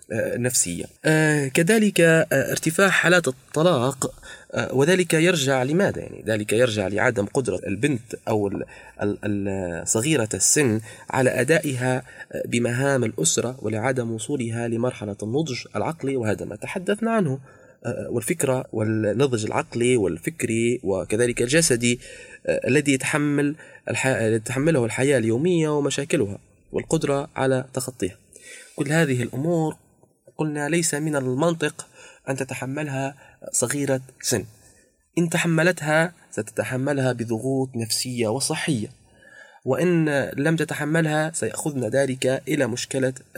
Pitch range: 120-155 Hz